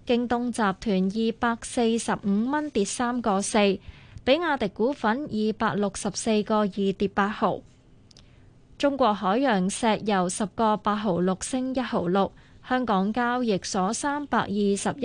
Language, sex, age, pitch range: Chinese, female, 20-39, 195-240 Hz